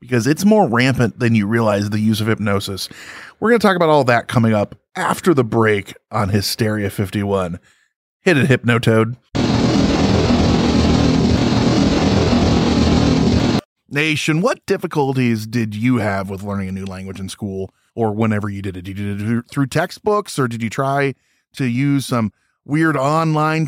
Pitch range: 110-155 Hz